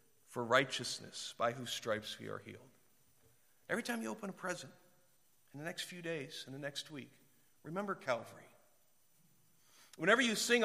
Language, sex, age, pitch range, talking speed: English, male, 40-59, 130-180 Hz, 160 wpm